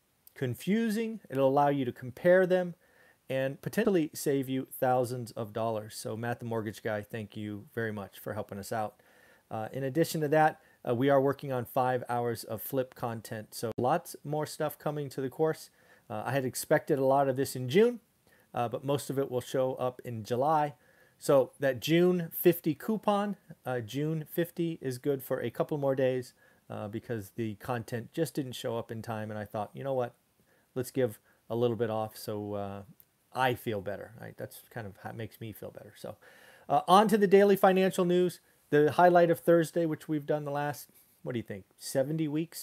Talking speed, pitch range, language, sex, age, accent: 205 wpm, 120-165 Hz, English, male, 30-49, American